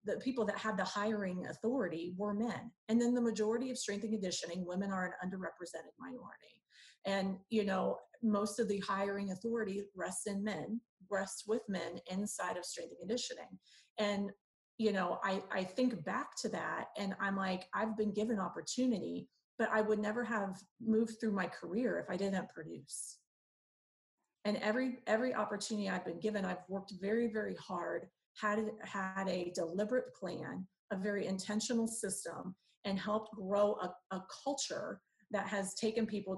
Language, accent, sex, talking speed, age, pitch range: English, American, female, 165 wpm, 30-49, 190-220 Hz